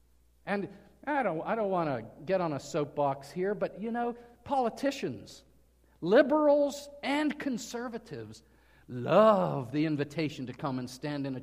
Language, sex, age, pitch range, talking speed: English, male, 50-69, 140-220 Hz, 145 wpm